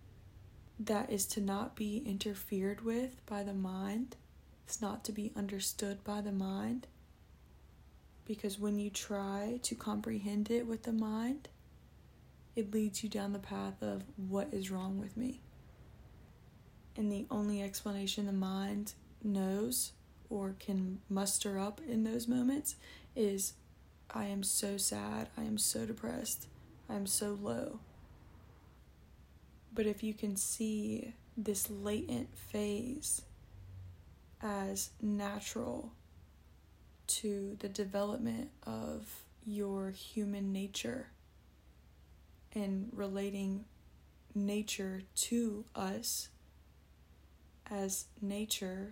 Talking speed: 110 wpm